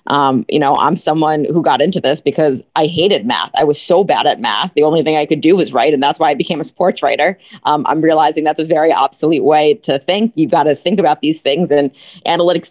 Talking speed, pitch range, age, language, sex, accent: 255 wpm, 145-175 Hz, 30-49, English, female, American